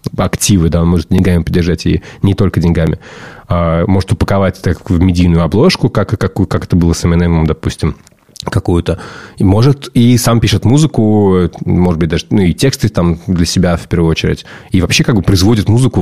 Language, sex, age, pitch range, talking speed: Russian, male, 20-39, 90-120 Hz, 185 wpm